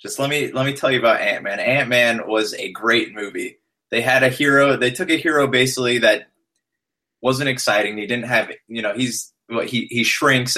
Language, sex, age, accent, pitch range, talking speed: English, male, 20-39, American, 110-135 Hz, 210 wpm